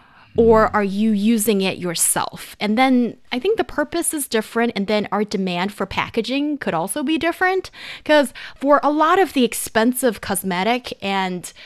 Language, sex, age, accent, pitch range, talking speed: English, female, 20-39, American, 210-285 Hz, 170 wpm